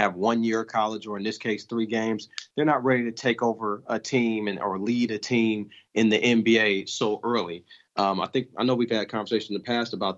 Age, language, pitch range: 30-49, English, 100-115 Hz